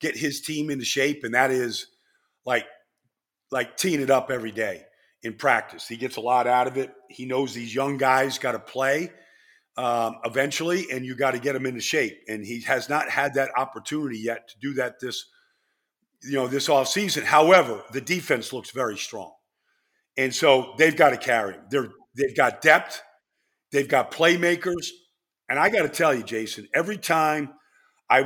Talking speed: 180 wpm